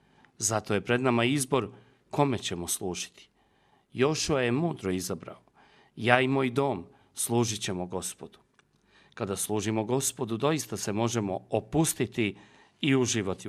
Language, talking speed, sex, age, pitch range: Croatian, 125 wpm, male, 40-59, 105-140 Hz